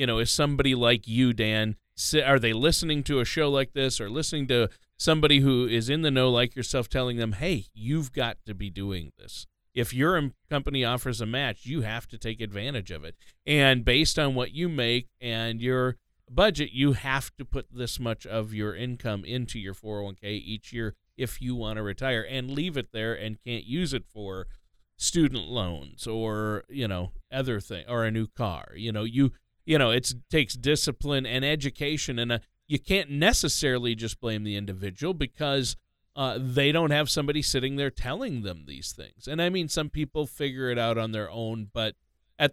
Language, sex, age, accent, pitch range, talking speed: English, male, 40-59, American, 110-145 Hz, 195 wpm